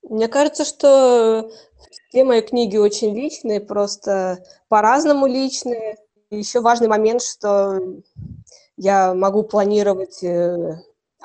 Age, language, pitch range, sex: 20-39, Russian, 190-225 Hz, female